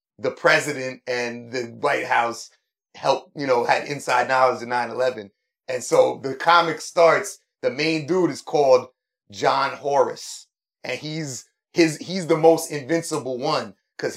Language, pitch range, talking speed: English, 130-170 Hz, 150 wpm